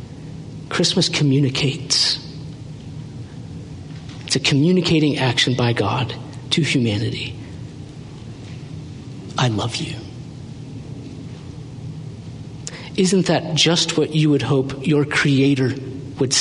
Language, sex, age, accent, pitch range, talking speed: English, male, 50-69, American, 130-150 Hz, 85 wpm